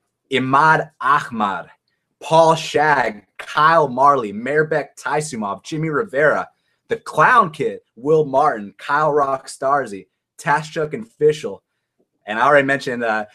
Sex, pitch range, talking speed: male, 140-185 Hz, 115 wpm